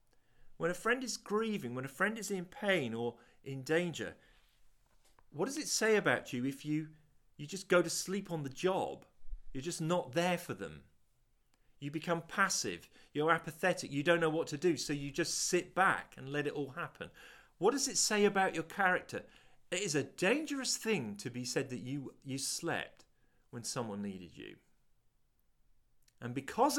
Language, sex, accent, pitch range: English, male, British, 110-170 Hz